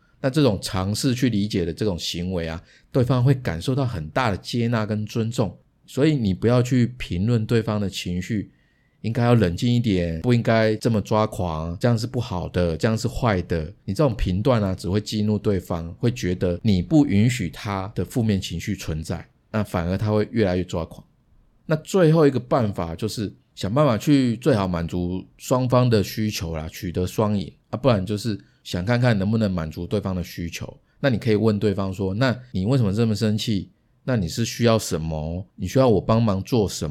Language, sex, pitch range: Chinese, male, 90-120 Hz